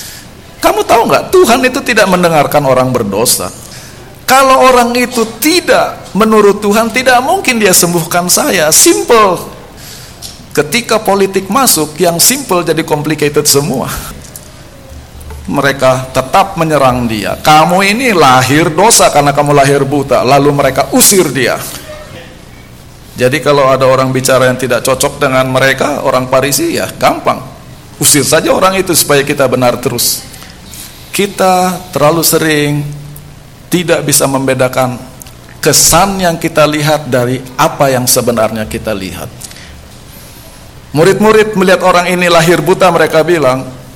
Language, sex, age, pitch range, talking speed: Indonesian, male, 50-69, 135-200 Hz, 125 wpm